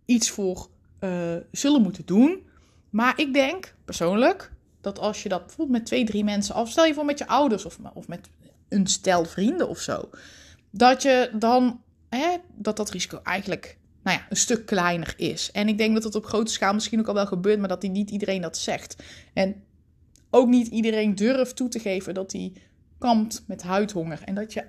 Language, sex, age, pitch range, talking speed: Dutch, female, 20-39, 185-230 Hz, 195 wpm